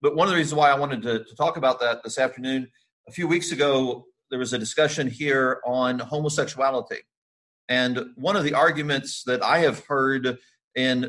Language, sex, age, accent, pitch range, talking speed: English, male, 40-59, American, 125-150 Hz, 195 wpm